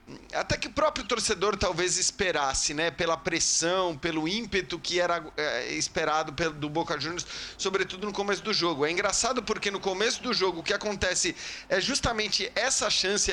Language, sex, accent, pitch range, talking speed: Portuguese, male, Brazilian, 165-205 Hz, 175 wpm